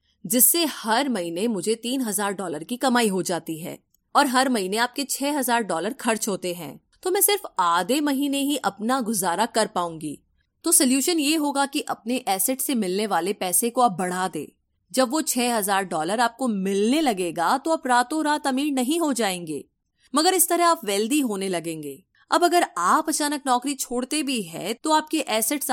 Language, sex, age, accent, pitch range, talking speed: Hindi, female, 30-49, native, 200-280 Hz, 190 wpm